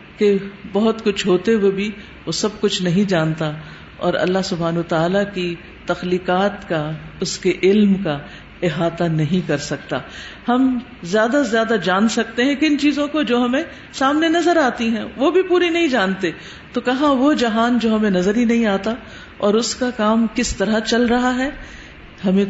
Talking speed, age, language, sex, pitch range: 175 wpm, 50-69, Urdu, female, 180-245 Hz